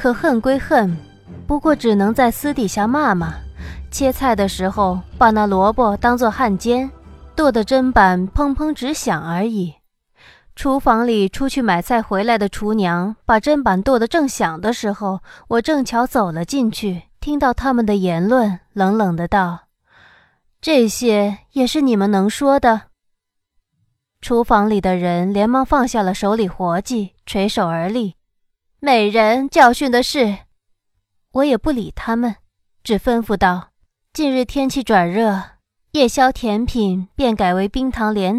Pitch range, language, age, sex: 190-255 Hz, Chinese, 20-39, female